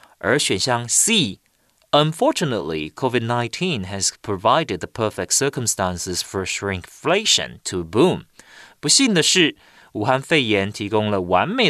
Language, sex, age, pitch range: Chinese, male, 30-49, 105-170 Hz